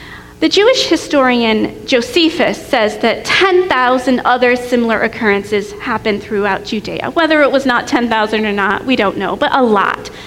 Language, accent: English, American